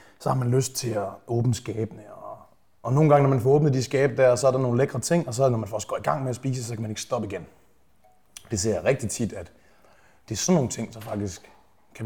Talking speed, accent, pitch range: 285 wpm, native, 110-140 Hz